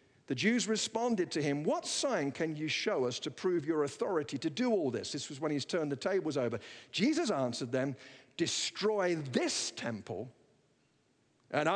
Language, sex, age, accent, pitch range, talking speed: English, male, 50-69, British, 145-220 Hz, 175 wpm